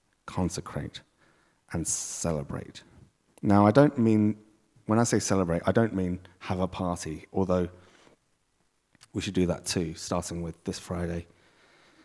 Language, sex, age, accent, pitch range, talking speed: English, male, 30-49, British, 90-110 Hz, 135 wpm